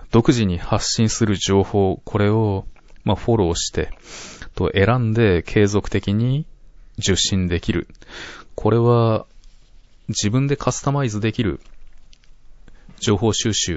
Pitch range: 95-115 Hz